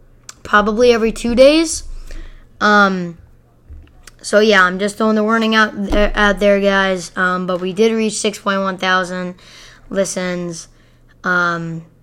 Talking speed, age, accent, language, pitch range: 125 wpm, 10-29, American, English, 185-220 Hz